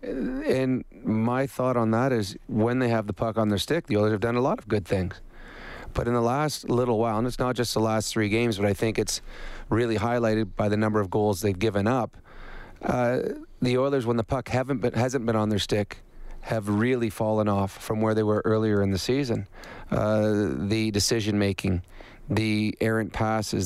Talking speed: 210 wpm